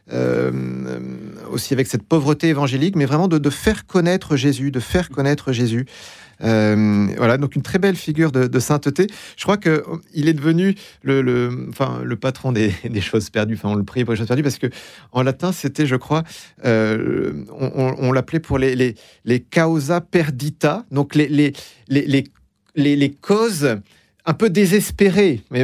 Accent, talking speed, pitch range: French, 185 wpm, 115-155 Hz